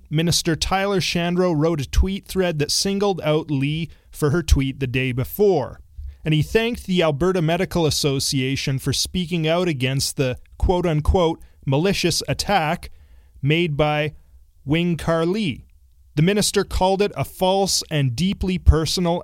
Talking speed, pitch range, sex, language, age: 145 wpm, 125-180 Hz, male, English, 30-49